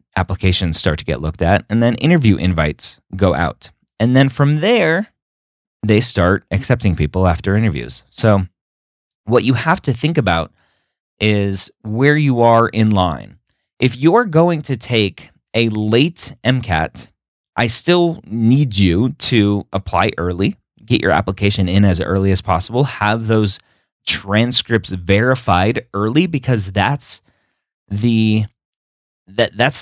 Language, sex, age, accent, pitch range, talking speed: English, male, 30-49, American, 95-130 Hz, 135 wpm